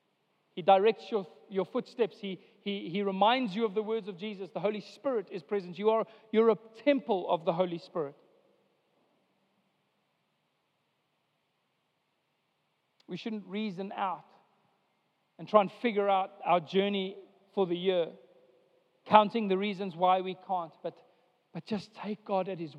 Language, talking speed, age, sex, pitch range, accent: English, 145 wpm, 40-59, male, 185-215 Hz, South African